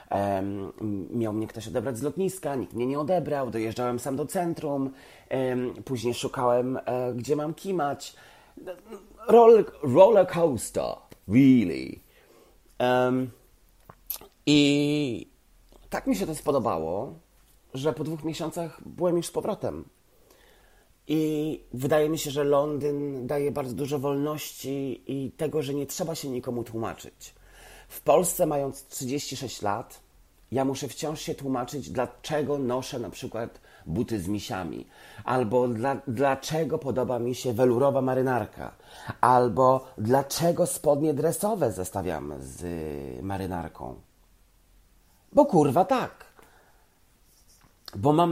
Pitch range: 120-150 Hz